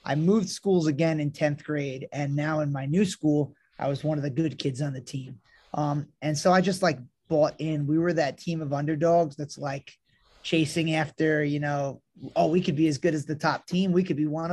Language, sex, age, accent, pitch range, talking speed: English, male, 20-39, American, 140-160 Hz, 235 wpm